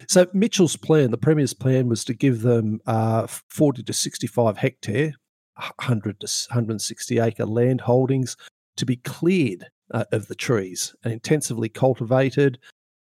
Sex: male